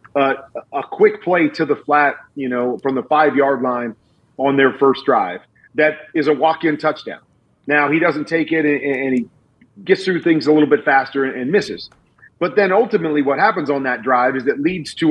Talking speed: 210 wpm